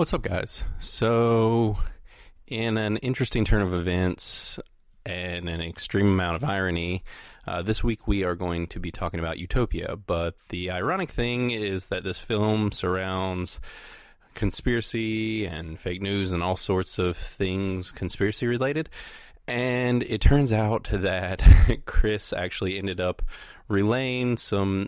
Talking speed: 140 wpm